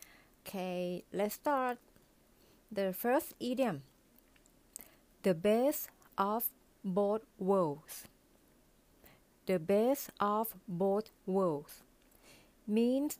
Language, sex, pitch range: Thai, female, 195-240 Hz